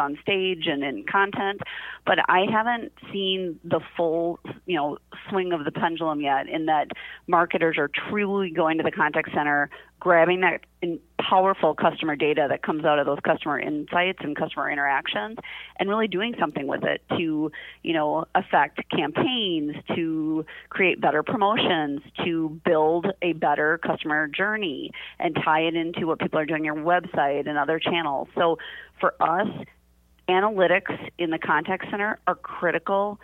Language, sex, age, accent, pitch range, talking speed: English, female, 30-49, American, 155-190 Hz, 155 wpm